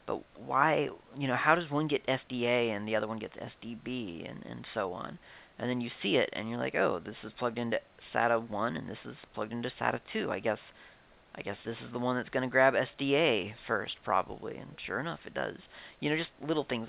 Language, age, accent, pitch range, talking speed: English, 40-59, American, 115-135 Hz, 230 wpm